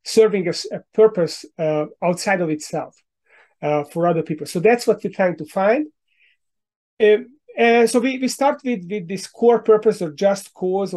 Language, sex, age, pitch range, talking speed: English, male, 30-49, 160-200 Hz, 180 wpm